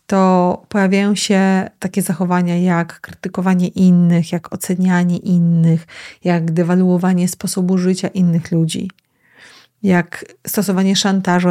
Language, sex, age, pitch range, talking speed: Polish, female, 30-49, 175-195 Hz, 105 wpm